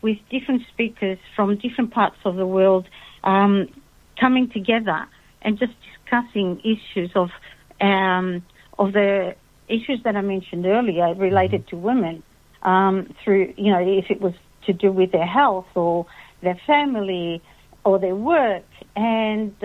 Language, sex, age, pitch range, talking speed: Greek, female, 50-69, 195-225 Hz, 145 wpm